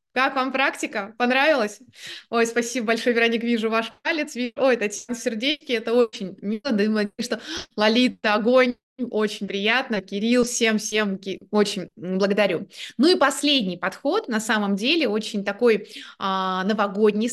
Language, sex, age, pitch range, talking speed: Russian, female, 20-39, 215-280 Hz, 140 wpm